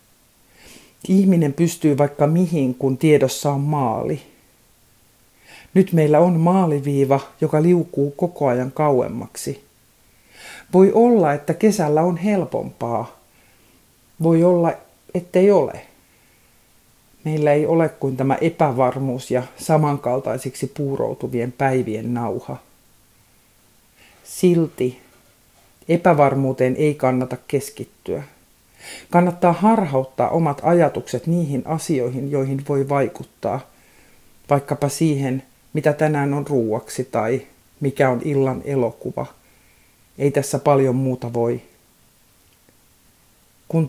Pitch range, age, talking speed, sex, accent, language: 130-165 Hz, 50-69, 95 wpm, male, native, Finnish